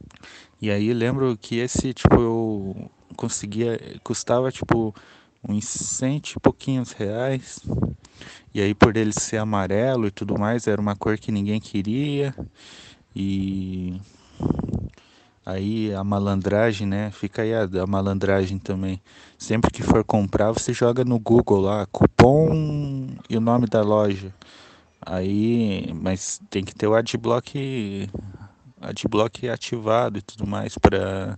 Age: 20-39